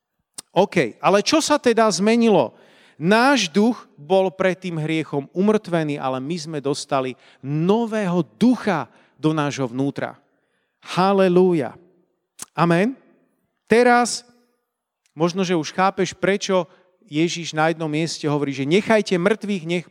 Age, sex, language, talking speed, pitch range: 40-59, male, Slovak, 120 wpm, 150-215 Hz